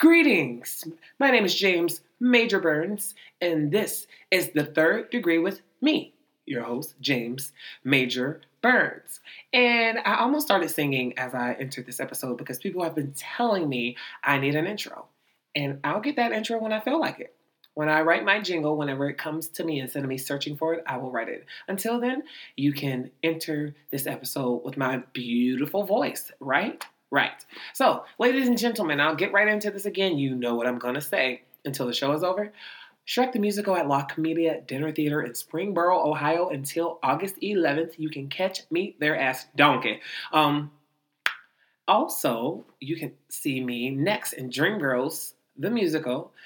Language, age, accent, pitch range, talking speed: English, 20-39, American, 140-200 Hz, 180 wpm